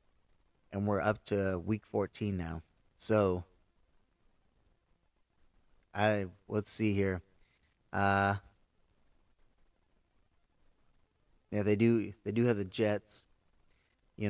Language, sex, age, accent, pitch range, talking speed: English, male, 30-49, American, 95-115 Hz, 90 wpm